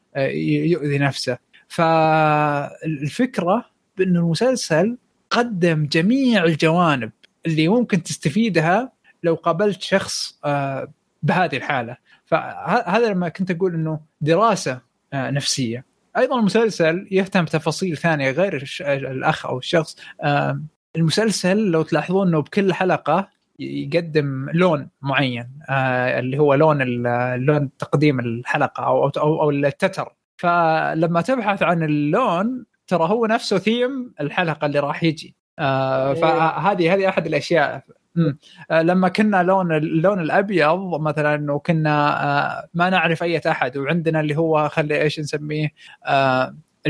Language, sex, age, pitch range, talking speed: Arabic, male, 20-39, 145-190 Hz, 115 wpm